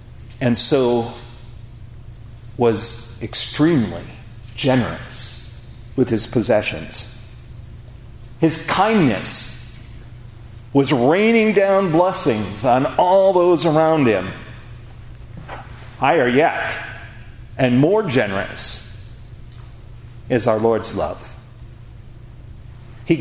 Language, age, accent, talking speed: English, 50-69, American, 75 wpm